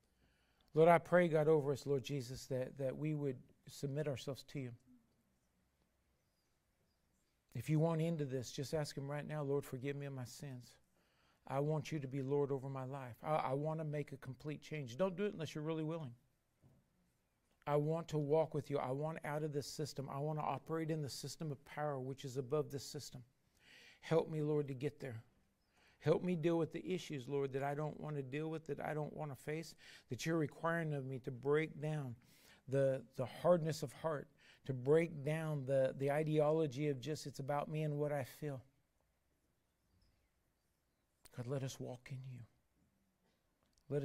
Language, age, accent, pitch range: English, 50-69, American, 130-155 Hz